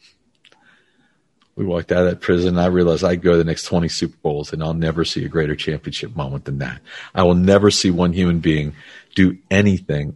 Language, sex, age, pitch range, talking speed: English, male, 50-69, 85-100 Hz, 205 wpm